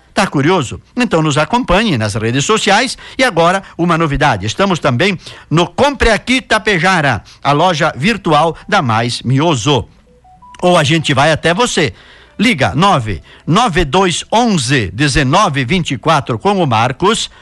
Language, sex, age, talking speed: Portuguese, male, 60-79, 120 wpm